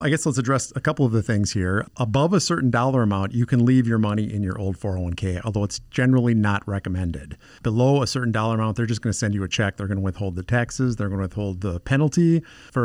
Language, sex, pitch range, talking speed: English, male, 100-125 Hz, 255 wpm